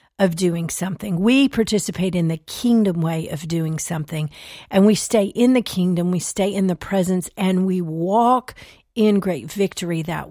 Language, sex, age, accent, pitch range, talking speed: English, female, 50-69, American, 175-220 Hz, 175 wpm